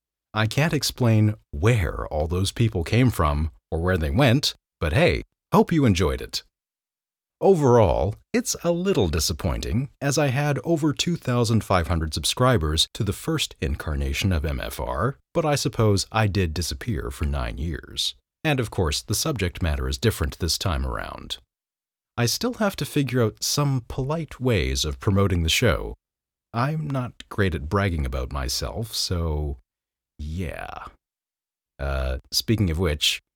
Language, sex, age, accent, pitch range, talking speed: English, male, 30-49, American, 80-120 Hz, 150 wpm